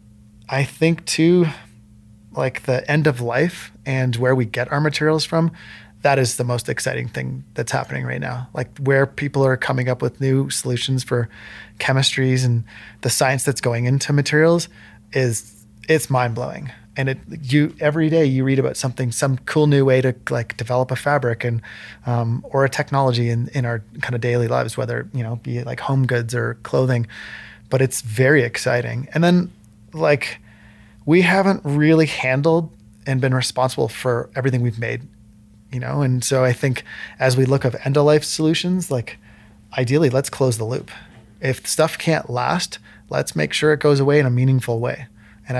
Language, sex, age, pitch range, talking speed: English, male, 20-39, 115-140 Hz, 185 wpm